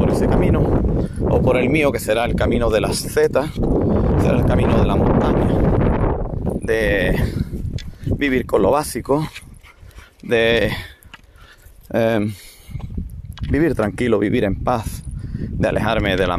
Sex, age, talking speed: male, 30-49, 130 wpm